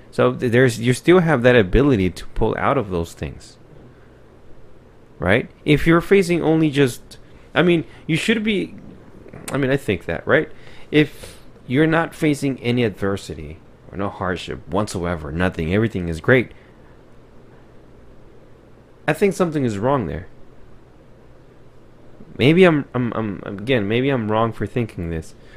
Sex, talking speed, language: male, 145 wpm, English